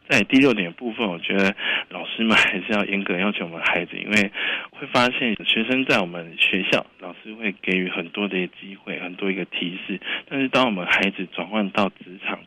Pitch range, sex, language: 90-105 Hz, male, Chinese